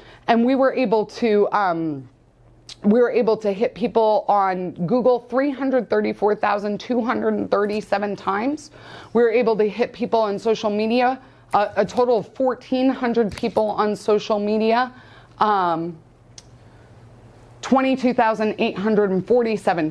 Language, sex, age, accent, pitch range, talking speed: English, female, 30-49, American, 205-260 Hz, 110 wpm